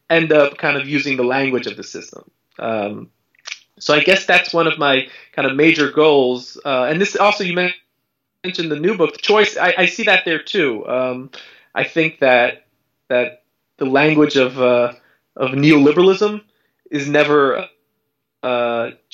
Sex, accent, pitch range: male, American, 140-185 Hz